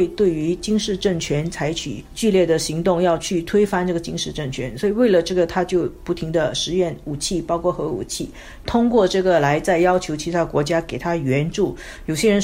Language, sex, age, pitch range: Chinese, female, 50-69, 165-200 Hz